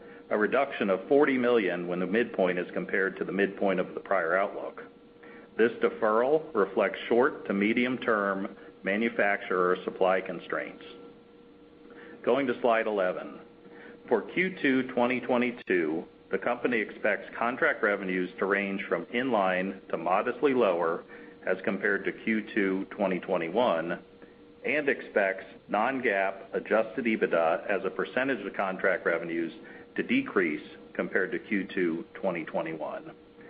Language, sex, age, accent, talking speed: English, male, 40-59, American, 115 wpm